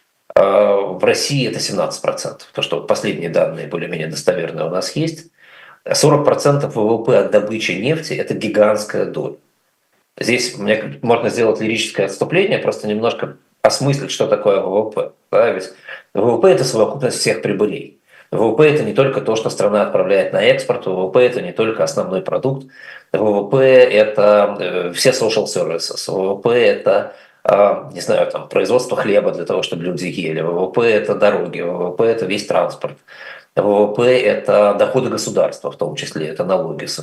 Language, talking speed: Russian, 160 wpm